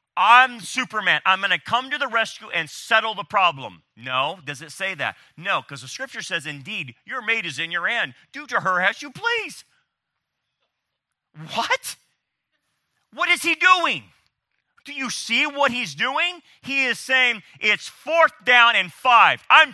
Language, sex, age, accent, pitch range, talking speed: English, male, 40-59, American, 150-250 Hz, 170 wpm